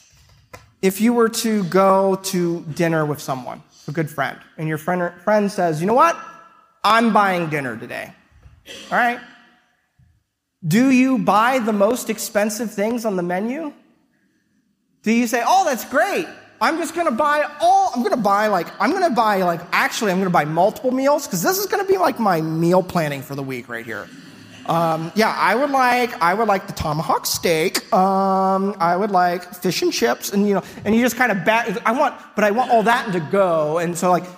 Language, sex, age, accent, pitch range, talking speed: English, male, 30-49, American, 165-235 Hz, 210 wpm